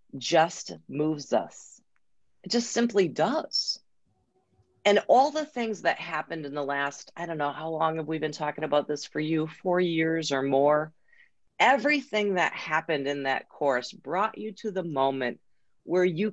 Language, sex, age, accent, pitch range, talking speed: English, female, 40-59, American, 140-215 Hz, 170 wpm